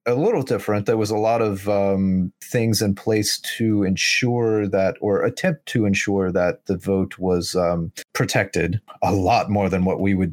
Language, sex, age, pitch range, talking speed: English, male, 30-49, 90-110 Hz, 185 wpm